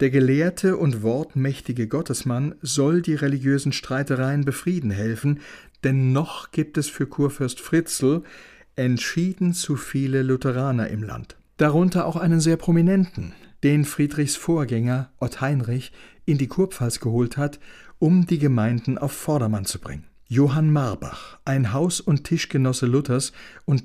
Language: German